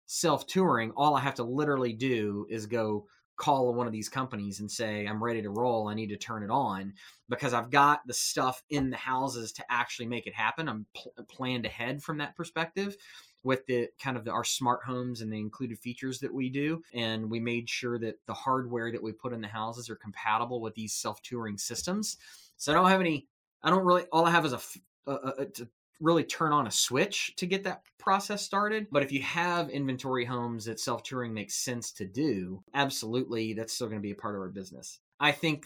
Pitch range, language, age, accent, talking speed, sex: 115-135 Hz, English, 30-49, American, 215 wpm, male